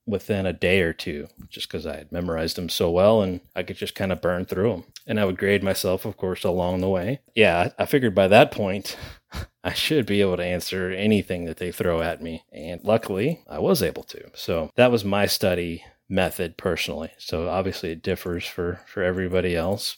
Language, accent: English, American